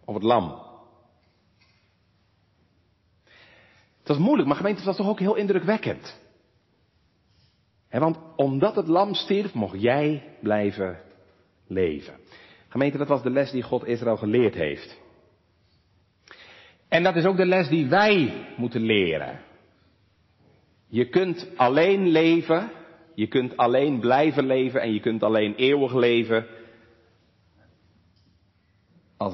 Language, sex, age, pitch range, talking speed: Dutch, male, 50-69, 100-155 Hz, 125 wpm